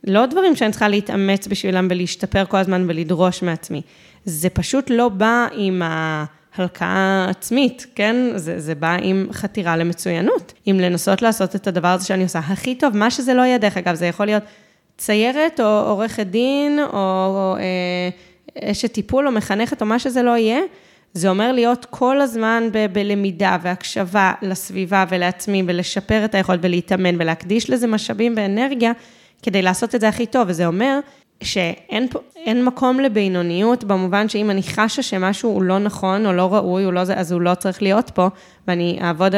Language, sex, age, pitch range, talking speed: Hebrew, female, 20-39, 180-220 Hz, 170 wpm